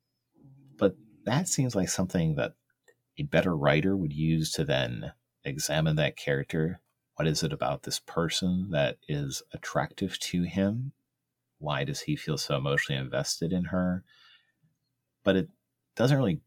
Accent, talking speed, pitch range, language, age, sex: American, 145 wpm, 80-135 Hz, English, 30-49, male